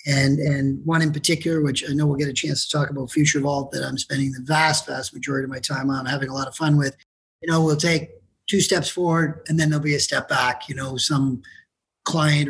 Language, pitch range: English, 140-170 Hz